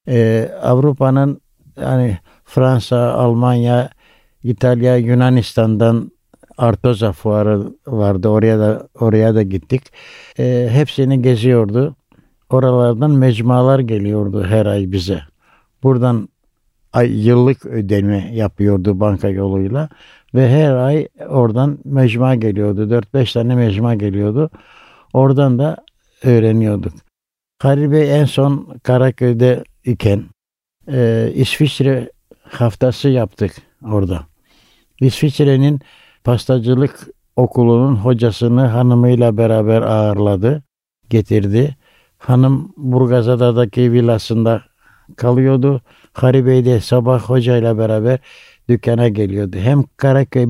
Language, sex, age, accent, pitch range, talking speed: Turkish, male, 60-79, native, 110-130 Hz, 90 wpm